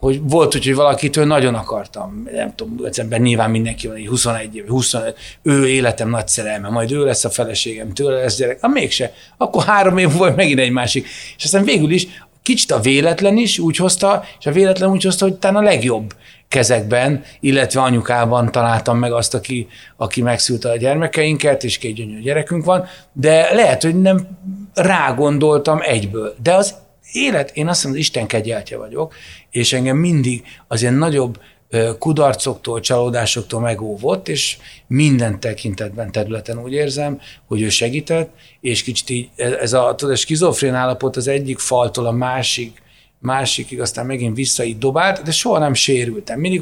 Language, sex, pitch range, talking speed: Hungarian, male, 115-150 Hz, 165 wpm